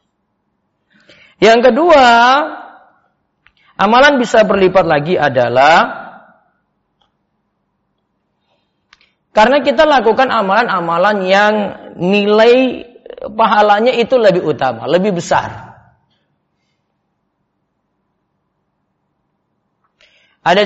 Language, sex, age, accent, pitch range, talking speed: Indonesian, male, 40-59, native, 165-250 Hz, 60 wpm